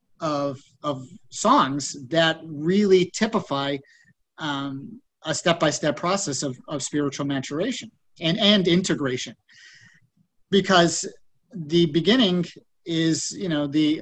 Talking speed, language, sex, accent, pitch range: 105 wpm, English, male, American, 150-175 Hz